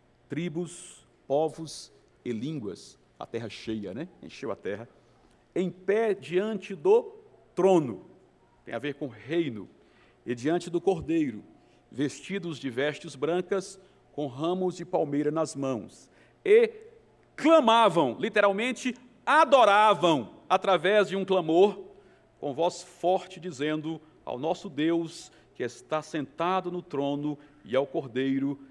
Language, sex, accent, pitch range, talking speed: Portuguese, male, Brazilian, 165-235 Hz, 120 wpm